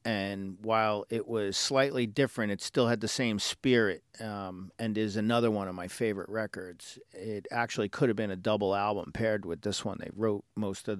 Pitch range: 100-125 Hz